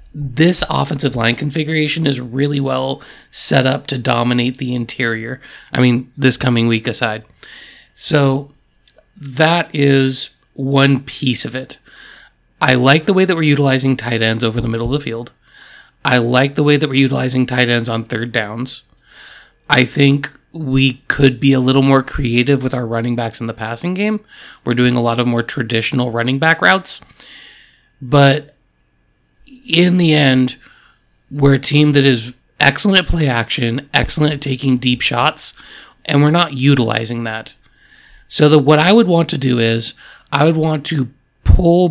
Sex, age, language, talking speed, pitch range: male, 30-49, English, 170 wpm, 125-150 Hz